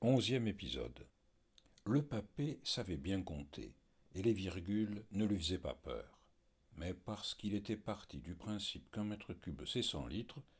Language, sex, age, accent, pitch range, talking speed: French, male, 60-79, French, 85-120 Hz, 160 wpm